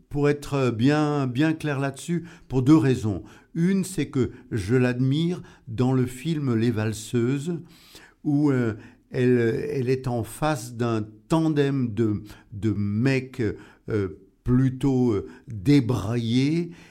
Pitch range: 120-150 Hz